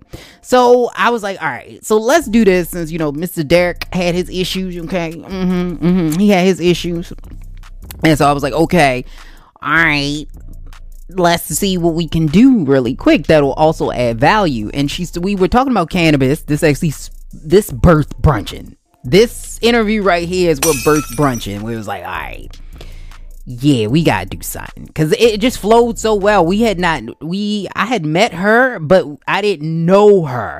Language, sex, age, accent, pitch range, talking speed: English, female, 20-39, American, 155-210 Hz, 185 wpm